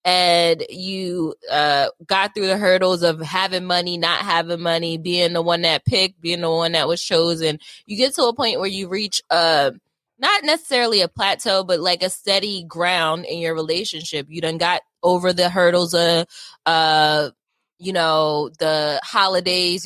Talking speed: 170 wpm